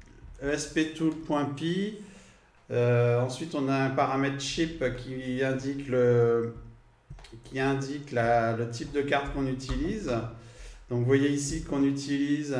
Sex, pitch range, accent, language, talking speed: male, 120-145 Hz, French, French, 125 wpm